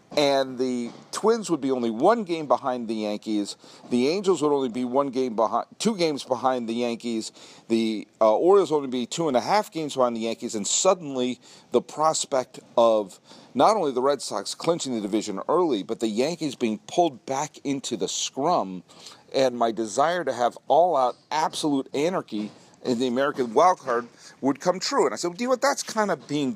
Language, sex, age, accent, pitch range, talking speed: English, male, 50-69, American, 120-190 Hz, 200 wpm